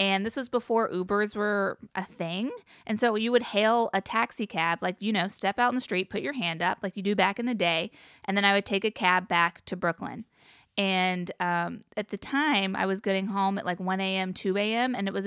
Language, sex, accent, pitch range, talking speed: English, female, American, 185-235 Hz, 250 wpm